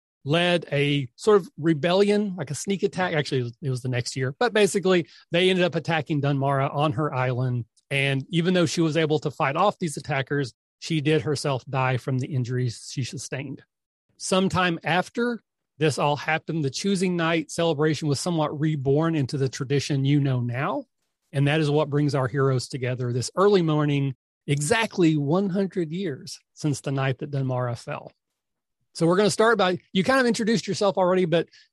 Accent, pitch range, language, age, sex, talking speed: American, 135-170 Hz, English, 30-49, male, 180 wpm